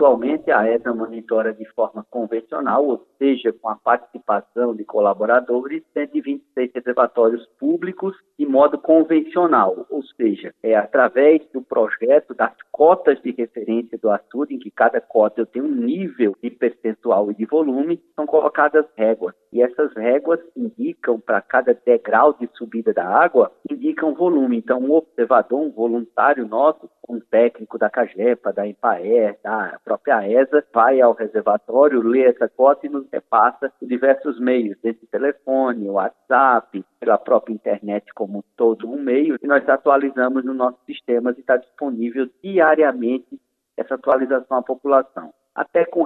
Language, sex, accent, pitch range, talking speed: Portuguese, male, Brazilian, 115-155 Hz, 150 wpm